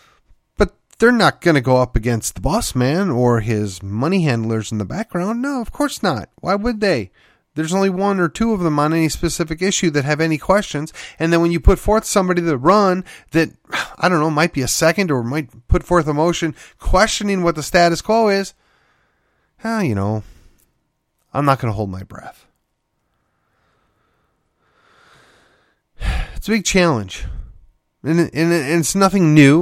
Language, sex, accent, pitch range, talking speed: English, male, American, 145-190 Hz, 180 wpm